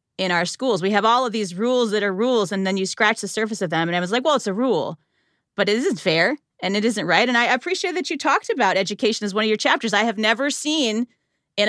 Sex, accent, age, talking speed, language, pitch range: female, American, 30-49, 275 wpm, English, 200-270 Hz